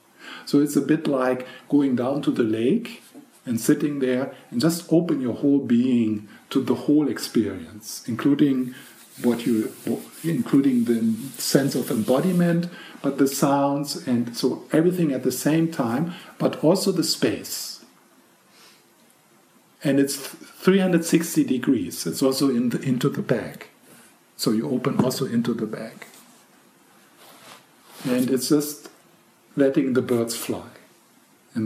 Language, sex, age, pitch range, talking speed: English, male, 50-69, 120-150 Hz, 135 wpm